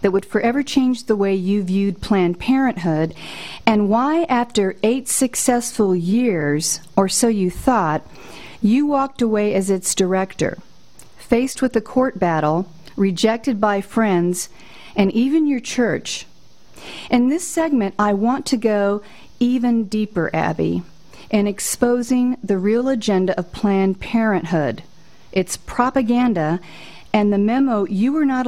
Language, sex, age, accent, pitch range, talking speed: English, female, 50-69, American, 185-240 Hz, 135 wpm